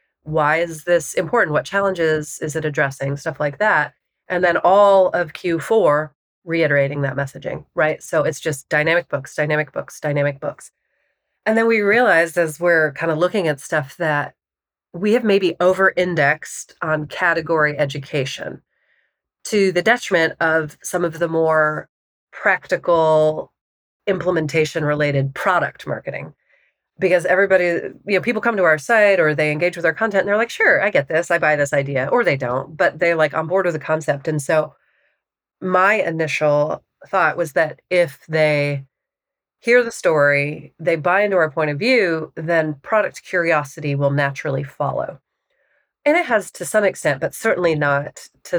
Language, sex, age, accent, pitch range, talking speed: English, female, 30-49, American, 150-180 Hz, 165 wpm